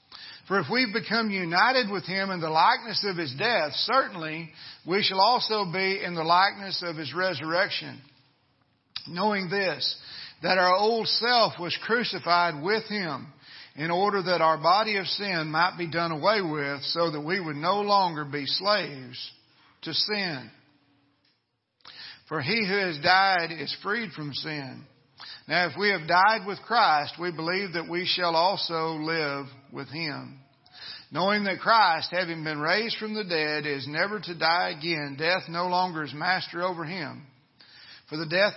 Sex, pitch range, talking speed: male, 145-190 Hz, 165 wpm